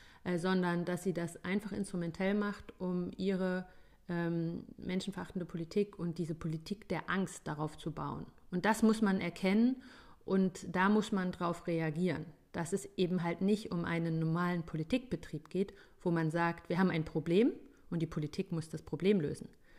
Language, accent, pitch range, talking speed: German, German, 160-190 Hz, 165 wpm